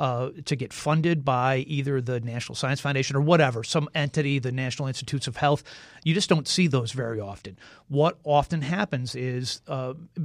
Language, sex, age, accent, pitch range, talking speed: English, male, 40-59, American, 130-150 Hz, 180 wpm